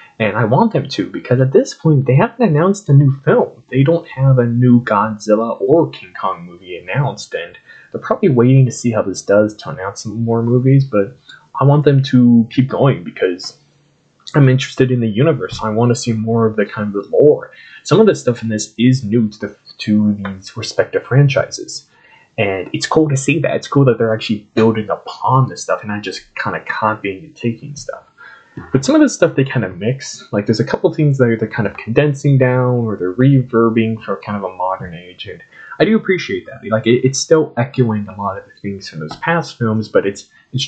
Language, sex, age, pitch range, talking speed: English, male, 20-39, 110-145 Hz, 220 wpm